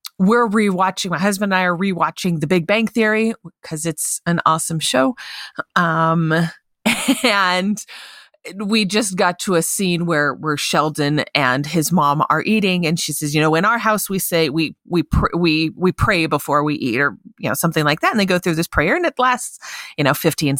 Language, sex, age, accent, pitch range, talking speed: English, female, 30-49, American, 170-230 Hz, 205 wpm